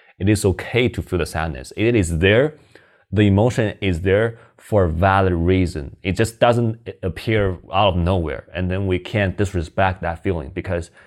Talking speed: 180 wpm